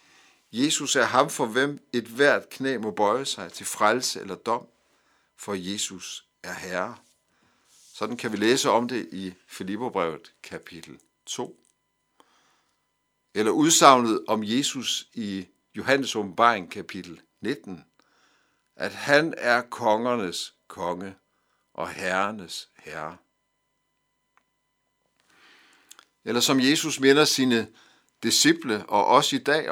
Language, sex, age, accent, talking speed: Danish, male, 60-79, native, 115 wpm